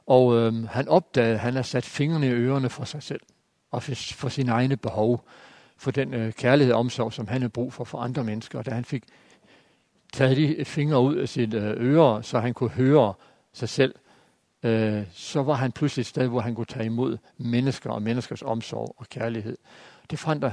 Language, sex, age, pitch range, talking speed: Danish, male, 60-79, 115-140 Hz, 210 wpm